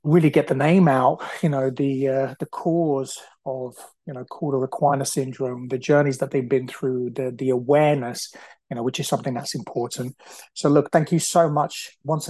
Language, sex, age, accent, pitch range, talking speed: English, male, 30-49, British, 135-155 Hz, 200 wpm